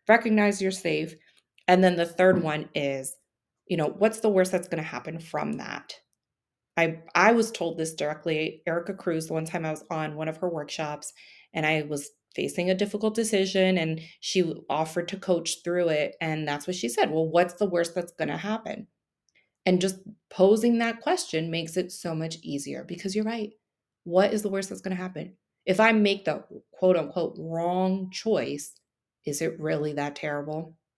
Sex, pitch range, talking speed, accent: female, 160-205 Hz, 190 wpm, American